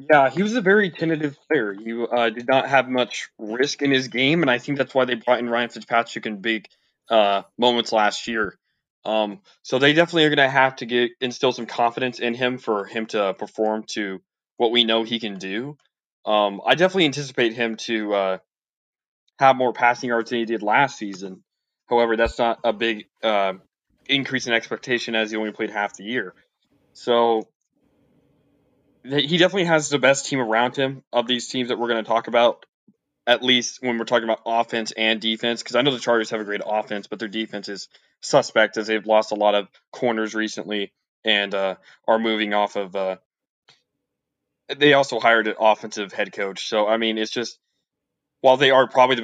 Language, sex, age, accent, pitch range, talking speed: English, male, 20-39, American, 105-125 Hz, 200 wpm